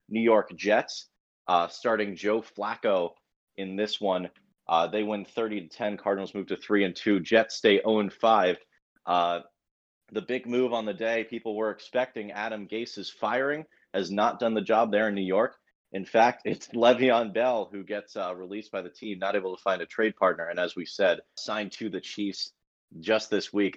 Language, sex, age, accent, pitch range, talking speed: English, male, 30-49, American, 95-115 Hz, 185 wpm